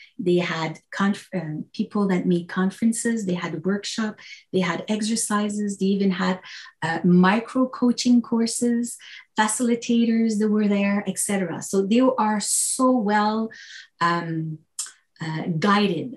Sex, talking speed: female, 135 wpm